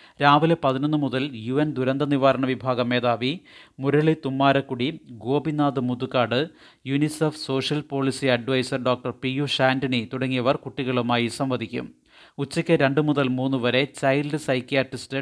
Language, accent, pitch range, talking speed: Malayalam, native, 125-140 Hz, 120 wpm